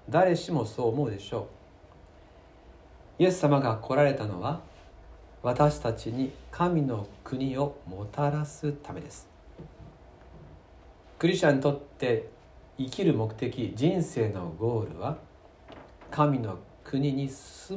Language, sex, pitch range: Japanese, male, 95-145 Hz